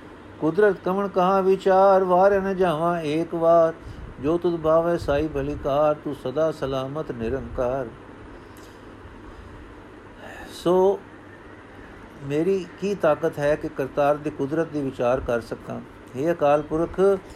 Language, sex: Punjabi, male